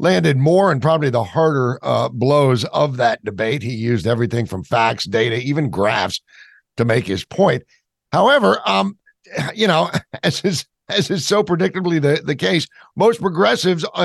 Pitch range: 130-175 Hz